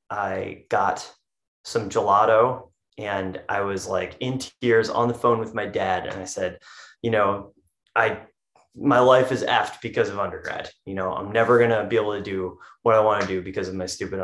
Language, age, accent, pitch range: English, 20-39, American, 105-130 Hz